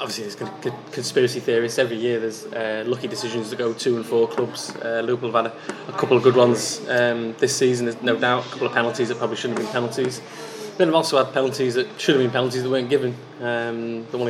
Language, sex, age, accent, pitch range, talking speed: English, male, 20-39, British, 120-135 Hz, 250 wpm